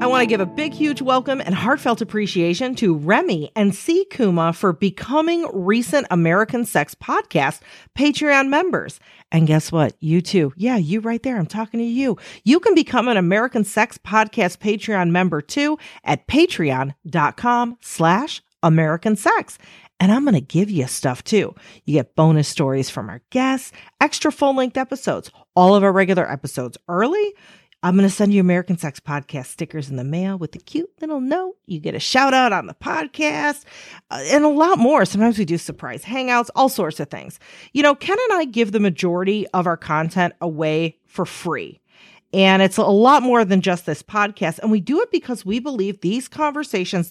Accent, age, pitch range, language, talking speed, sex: American, 40-59, 170-255 Hz, English, 185 wpm, female